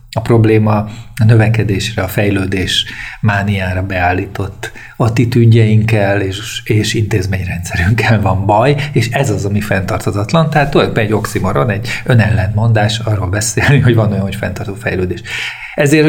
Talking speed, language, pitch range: 125 wpm, Hungarian, 105-120 Hz